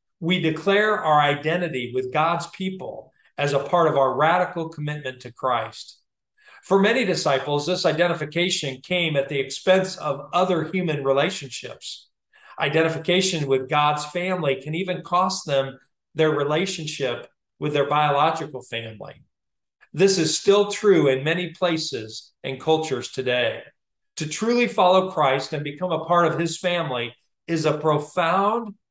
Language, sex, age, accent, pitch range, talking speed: English, male, 40-59, American, 145-185 Hz, 140 wpm